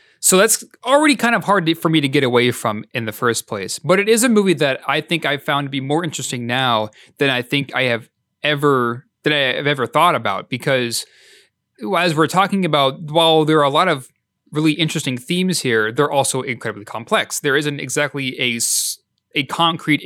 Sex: male